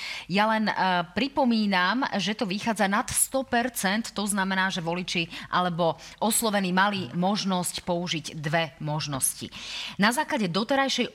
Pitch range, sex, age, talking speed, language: 170-215 Hz, female, 30-49, 125 wpm, Slovak